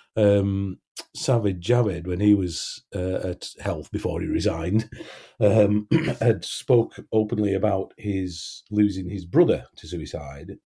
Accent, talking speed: British, 130 wpm